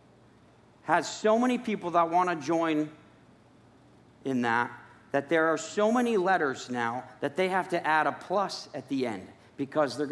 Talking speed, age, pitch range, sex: 170 wpm, 40-59, 160-230 Hz, male